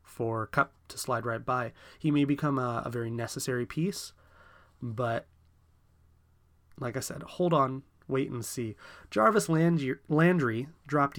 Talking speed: 145 wpm